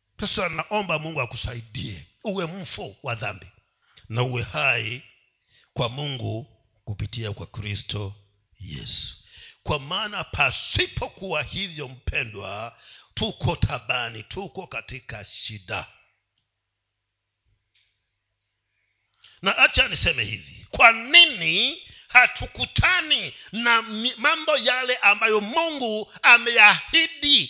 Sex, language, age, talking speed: male, Swahili, 50-69, 85 wpm